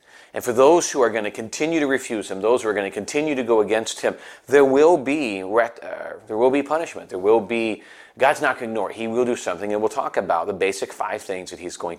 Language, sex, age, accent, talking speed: English, male, 30-49, American, 265 wpm